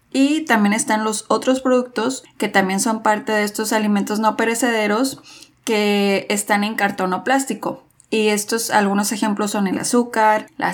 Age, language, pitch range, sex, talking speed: 20-39, Spanish, 195-240 Hz, female, 160 wpm